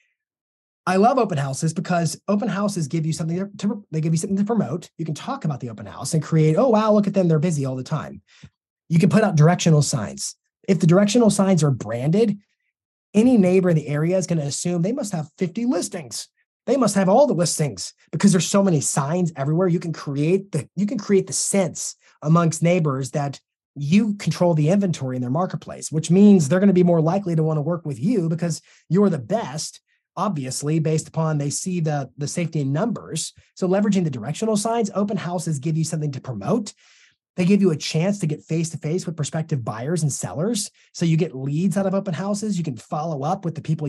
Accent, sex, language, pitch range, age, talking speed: American, male, English, 150-195 Hz, 30-49, 220 wpm